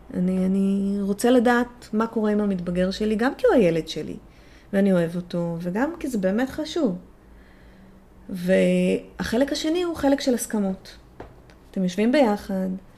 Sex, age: female, 30-49